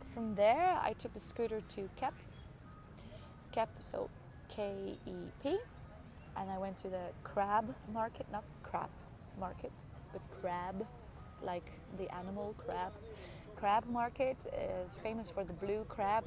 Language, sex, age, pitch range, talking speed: English, female, 20-39, 190-225 Hz, 135 wpm